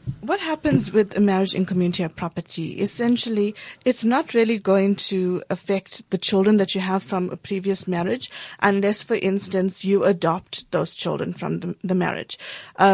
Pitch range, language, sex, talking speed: 185-220 Hz, English, female, 170 wpm